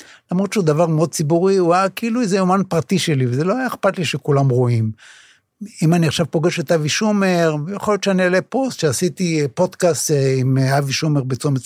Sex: male